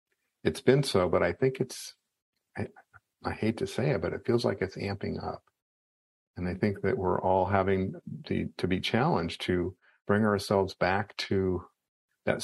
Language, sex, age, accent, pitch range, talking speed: English, male, 50-69, American, 90-105 Hz, 180 wpm